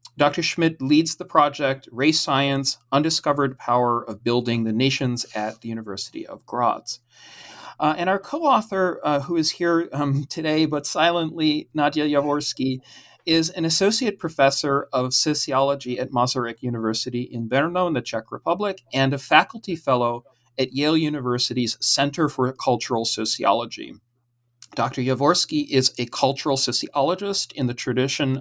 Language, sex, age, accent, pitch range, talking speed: English, male, 40-59, American, 120-155 Hz, 140 wpm